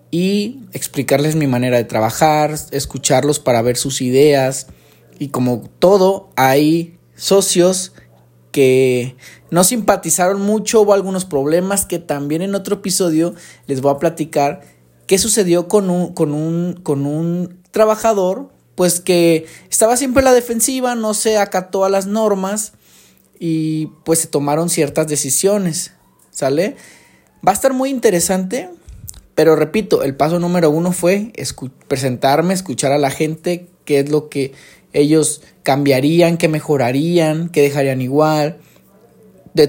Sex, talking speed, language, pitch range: male, 130 wpm, Spanish, 140-185 Hz